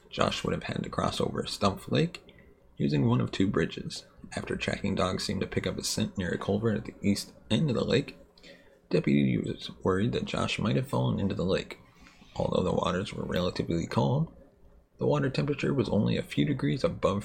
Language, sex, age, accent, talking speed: English, male, 30-49, American, 205 wpm